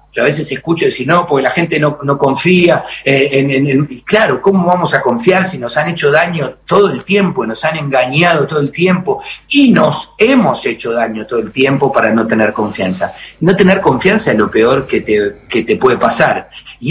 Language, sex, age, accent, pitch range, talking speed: Spanish, male, 40-59, Argentinian, 130-180 Hz, 210 wpm